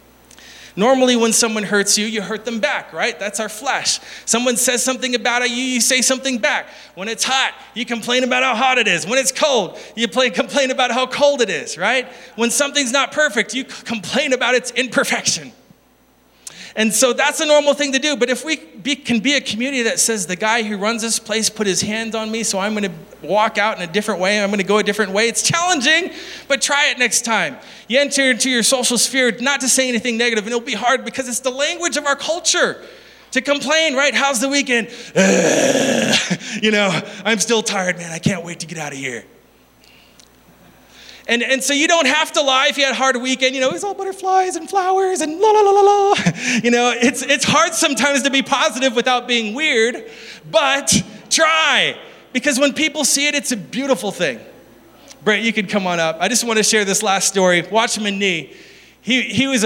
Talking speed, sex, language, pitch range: 220 wpm, male, English, 210-275 Hz